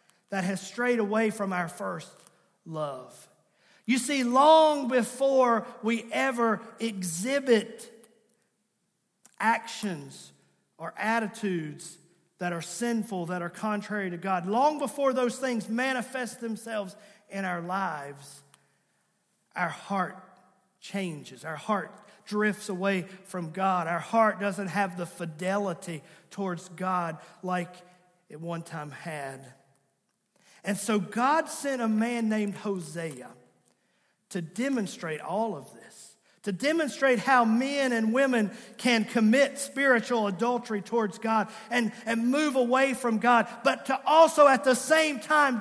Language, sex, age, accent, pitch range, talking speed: English, male, 40-59, American, 190-260 Hz, 125 wpm